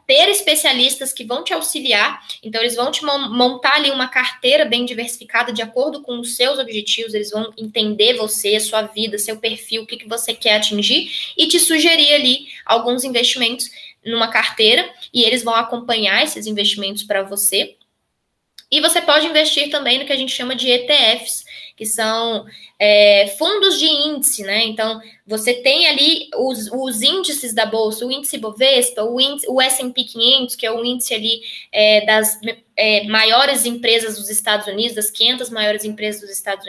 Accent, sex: Brazilian, female